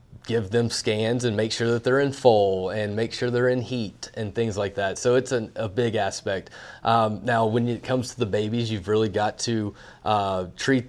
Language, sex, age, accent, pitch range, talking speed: English, male, 30-49, American, 105-120 Hz, 220 wpm